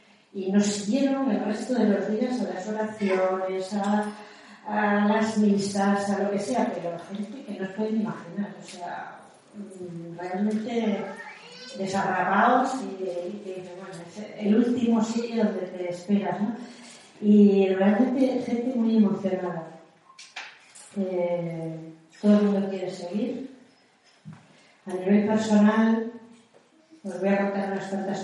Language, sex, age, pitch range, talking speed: Spanish, female, 40-59, 185-215 Hz, 130 wpm